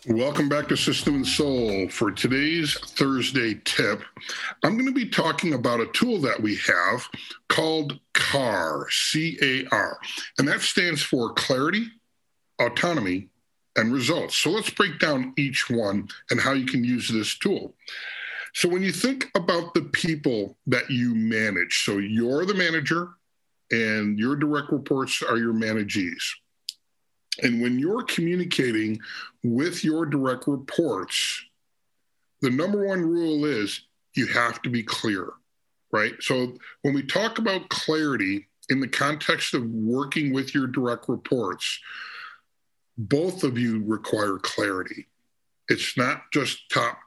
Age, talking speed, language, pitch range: 50-69, 140 wpm, English, 115-165 Hz